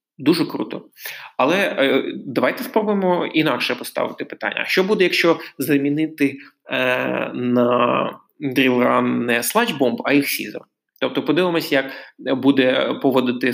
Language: Ukrainian